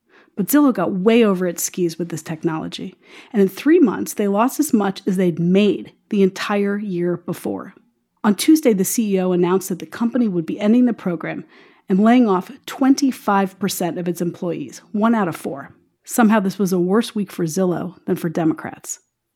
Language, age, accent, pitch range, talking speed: English, 40-59, American, 185-255 Hz, 185 wpm